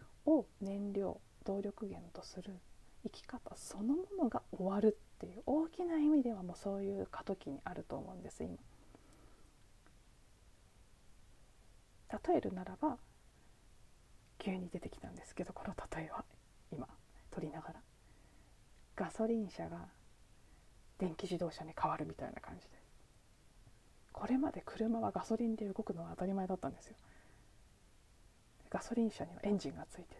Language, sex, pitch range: Japanese, female, 145-235 Hz